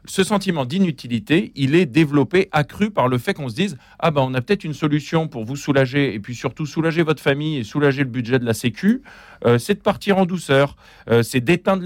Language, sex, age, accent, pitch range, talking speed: French, male, 40-59, French, 110-145 Hz, 240 wpm